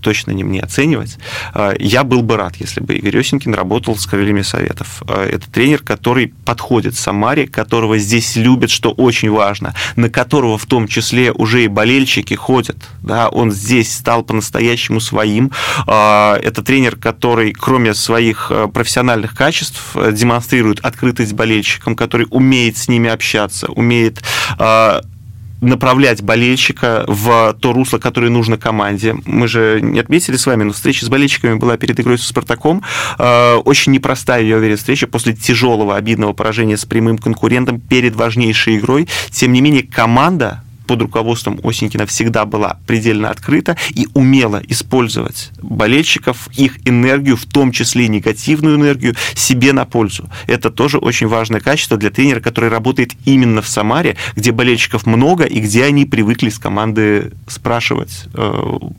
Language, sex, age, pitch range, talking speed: Russian, male, 30-49, 110-125 Hz, 145 wpm